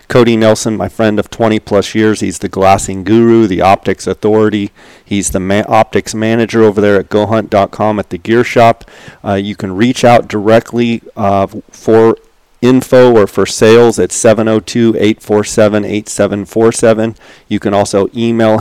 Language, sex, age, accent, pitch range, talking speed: English, male, 40-59, American, 100-115 Hz, 145 wpm